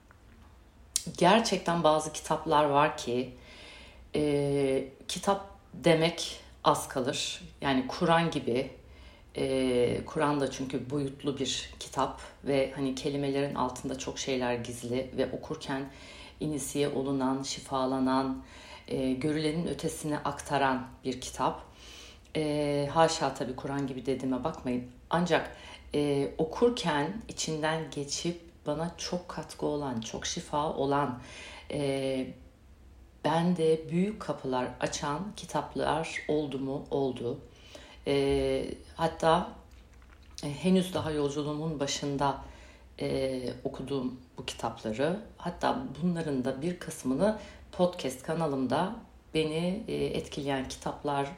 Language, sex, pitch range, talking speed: Turkish, female, 130-155 Hz, 105 wpm